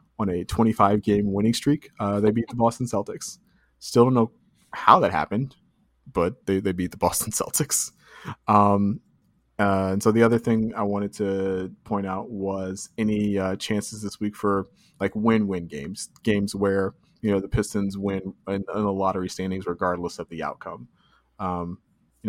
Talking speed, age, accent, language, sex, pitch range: 170 wpm, 20-39, American, English, male, 100-120 Hz